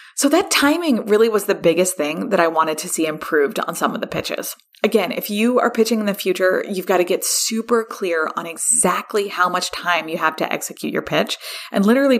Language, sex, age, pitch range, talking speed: English, female, 20-39, 170-230 Hz, 225 wpm